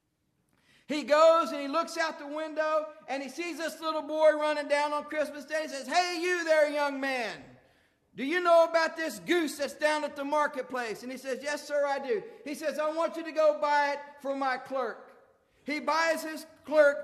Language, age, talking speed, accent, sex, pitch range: English, 50-69, 210 wpm, American, male, 285-320 Hz